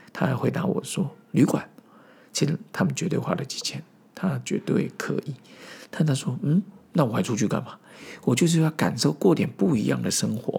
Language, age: Chinese, 50-69